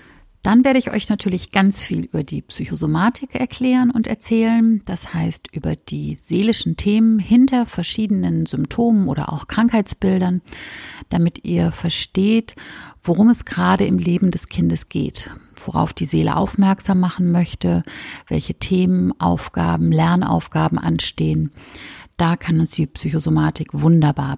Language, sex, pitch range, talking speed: German, female, 145-210 Hz, 130 wpm